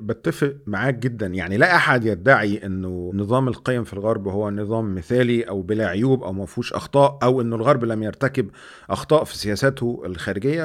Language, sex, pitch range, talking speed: Arabic, male, 110-160 Hz, 170 wpm